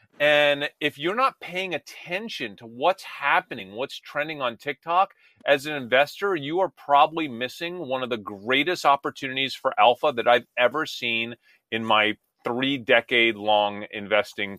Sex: male